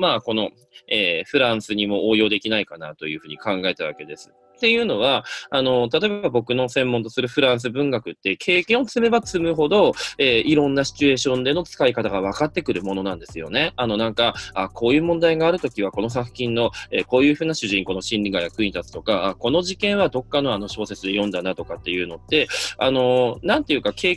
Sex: male